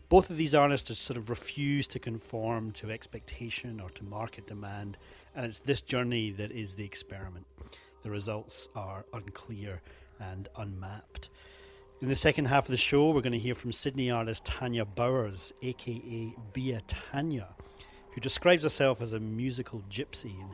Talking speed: 165 wpm